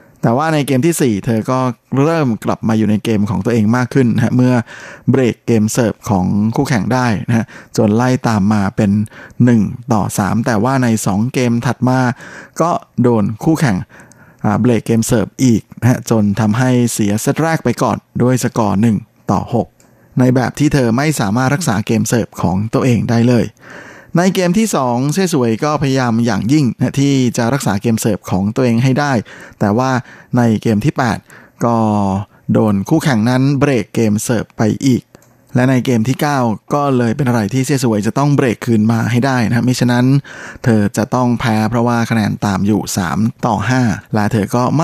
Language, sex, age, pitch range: Thai, male, 20-39, 110-130 Hz